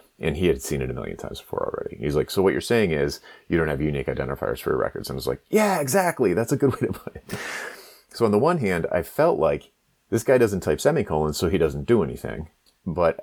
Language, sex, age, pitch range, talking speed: English, male, 30-49, 75-85 Hz, 260 wpm